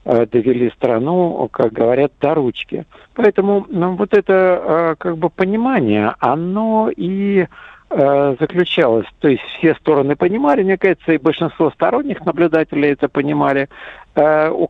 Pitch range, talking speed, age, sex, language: 125-165 Hz, 115 wpm, 60-79, male, Russian